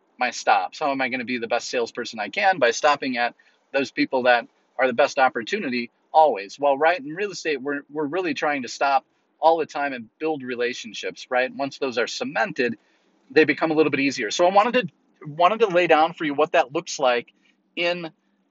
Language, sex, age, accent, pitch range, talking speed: English, male, 30-49, American, 130-180 Hz, 220 wpm